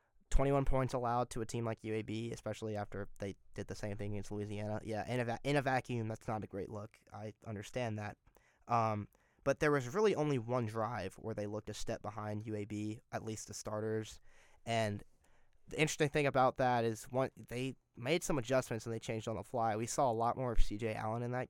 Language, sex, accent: English, male, American